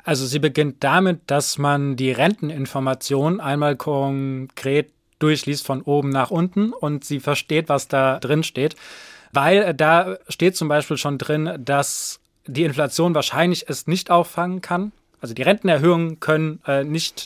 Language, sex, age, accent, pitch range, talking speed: German, male, 20-39, German, 140-175 Hz, 145 wpm